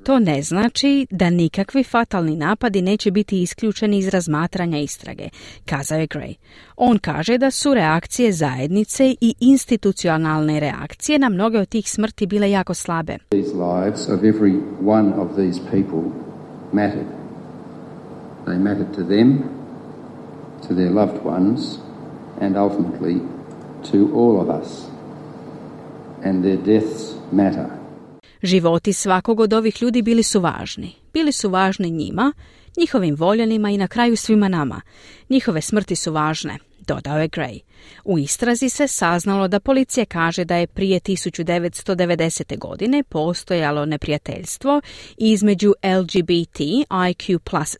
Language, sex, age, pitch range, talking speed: Croatian, male, 50-69, 155-225 Hz, 130 wpm